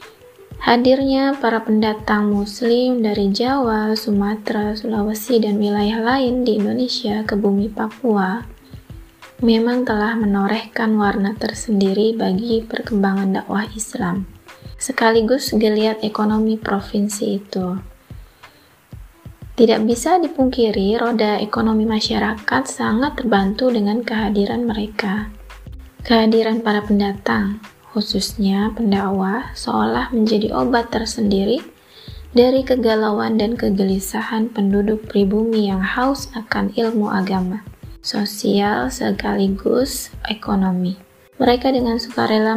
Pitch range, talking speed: 205-235 Hz, 95 wpm